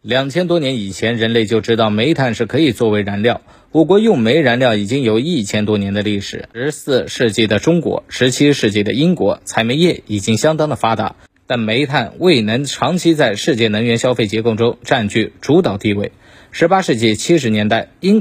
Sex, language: male, Chinese